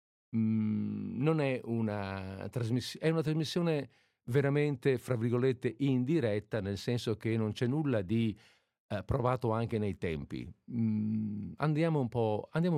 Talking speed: 130 wpm